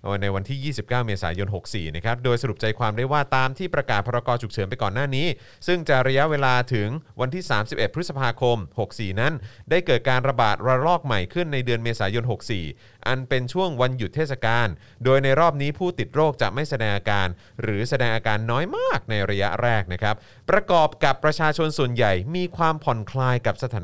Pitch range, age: 110-155 Hz, 30-49